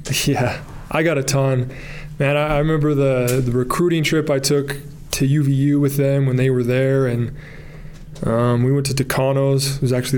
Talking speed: 190 wpm